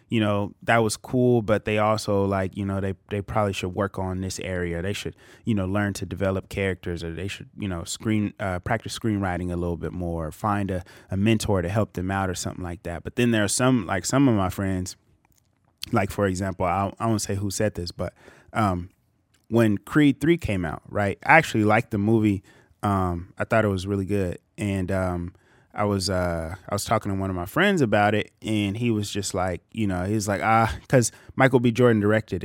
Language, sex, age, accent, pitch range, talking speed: English, male, 20-39, American, 95-115 Hz, 230 wpm